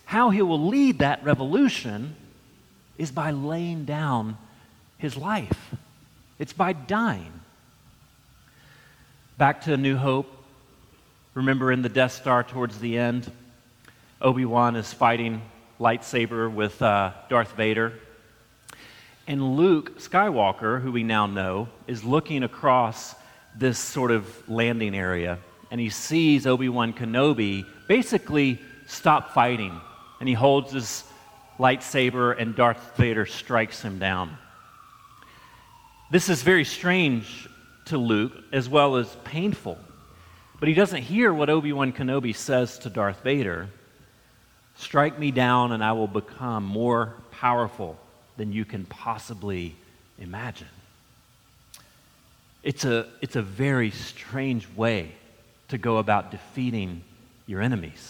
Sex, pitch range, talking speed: male, 110-140 Hz, 120 wpm